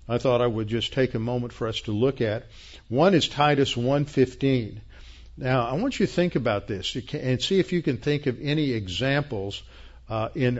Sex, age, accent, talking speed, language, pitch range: male, 50-69, American, 205 wpm, English, 115-145 Hz